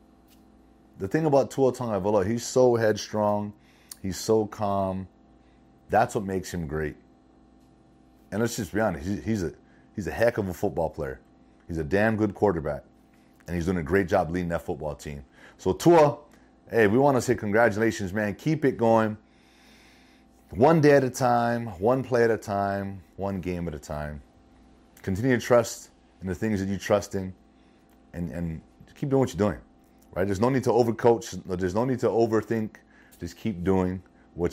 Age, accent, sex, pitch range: 30-49, American, male, 85-115 Hz